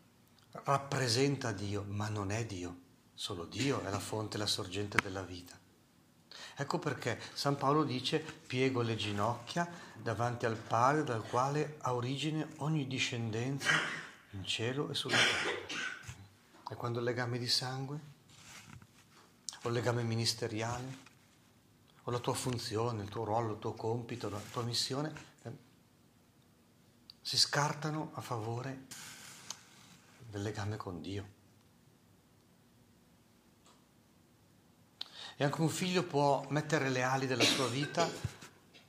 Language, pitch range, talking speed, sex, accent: Italian, 110-140 Hz, 125 wpm, male, native